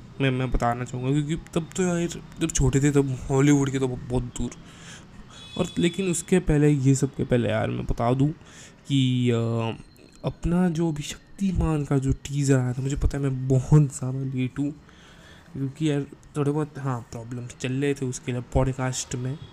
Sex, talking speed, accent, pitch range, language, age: male, 185 wpm, native, 135-160 Hz, Hindi, 20-39